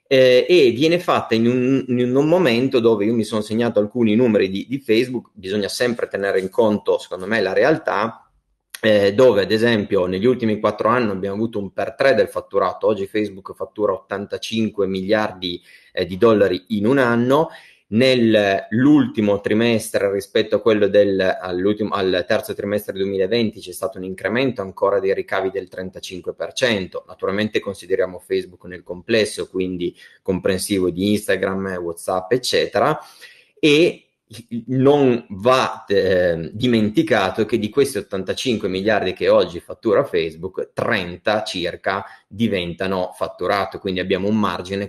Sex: male